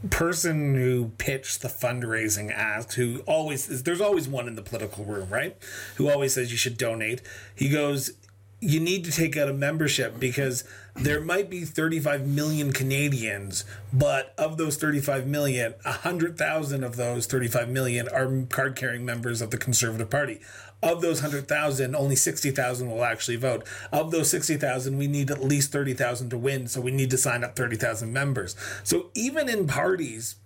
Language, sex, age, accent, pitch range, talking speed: English, male, 30-49, American, 115-150 Hz, 165 wpm